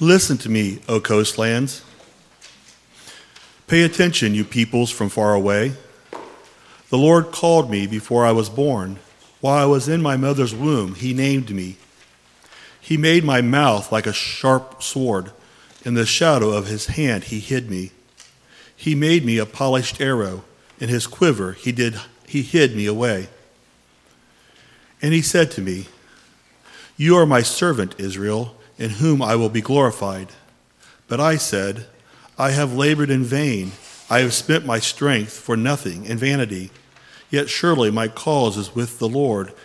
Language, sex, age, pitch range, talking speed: English, male, 40-59, 105-140 Hz, 155 wpm